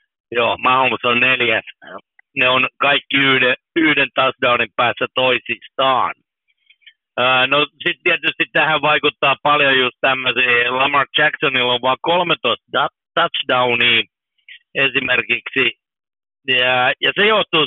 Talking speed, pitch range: 110 wpm, 120-150 Hz